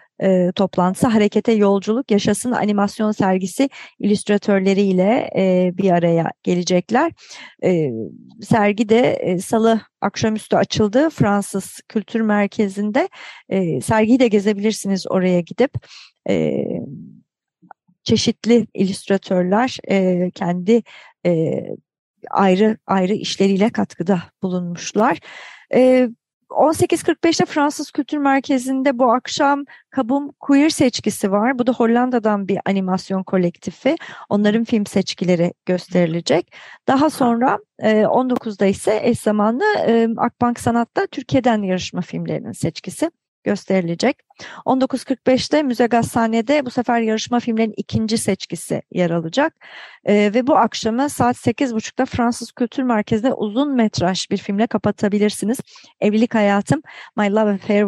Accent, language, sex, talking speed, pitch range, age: native, Turkish, female, 110 wpm, 195-245 Hz, 40-59